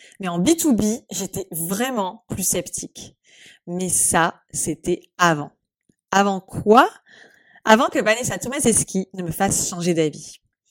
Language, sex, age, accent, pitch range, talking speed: French, female, 20-39, French, 180-255 Hz, 125 wpm